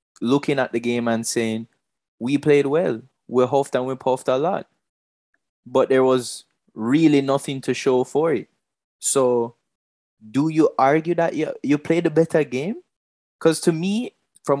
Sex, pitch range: male, 110-140 Hz